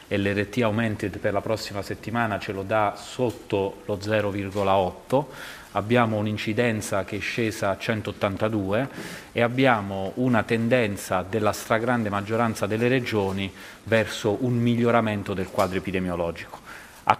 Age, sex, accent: 30-49, male, native